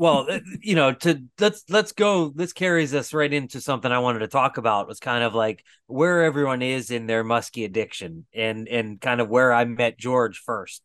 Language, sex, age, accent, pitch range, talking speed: English, male, 30-49, American, 120-155 Hz, 210 wpm